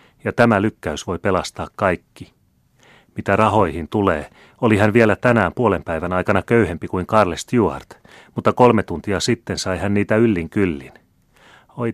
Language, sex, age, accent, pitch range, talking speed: Finnish, male, 30-49, native, 90-115 Hz, 150 wpm